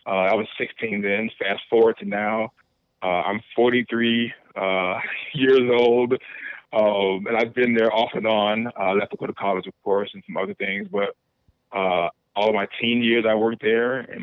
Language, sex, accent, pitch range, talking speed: English, male, American, 100-120 Hz, 190 wpm